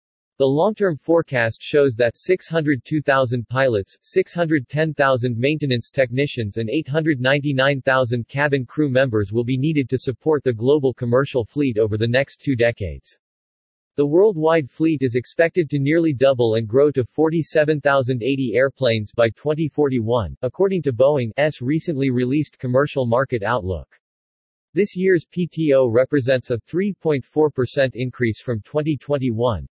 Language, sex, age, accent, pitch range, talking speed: English, male, 40-59, American, 120-150 Hz, 125 wpm